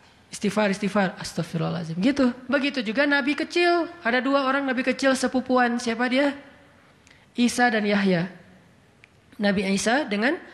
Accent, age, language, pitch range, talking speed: native, 20-39, Indonesian, 205-255 Hz, 125 wpm